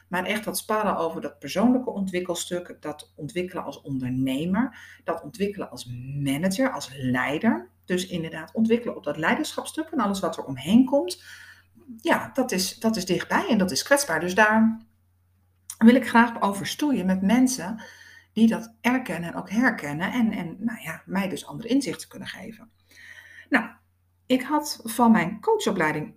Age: 60-79